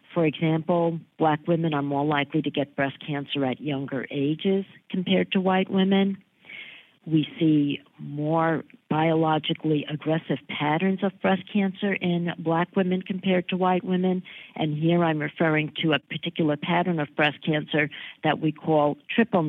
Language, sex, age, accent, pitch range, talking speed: English, female, 50-69, American, 140-170 Hz, 150 wpm